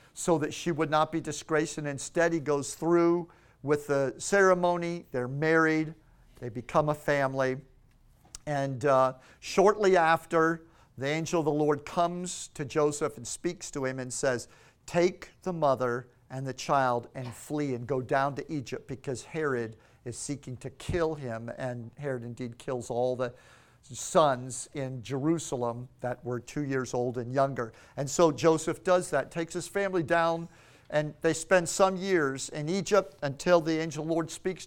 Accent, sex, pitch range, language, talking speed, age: American, male, 130-165 Hz, English, 165 wpm, 50-69